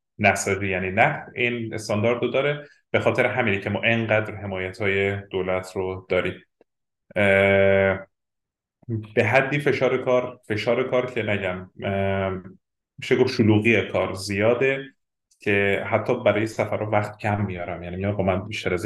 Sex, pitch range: male, 100-120 Hz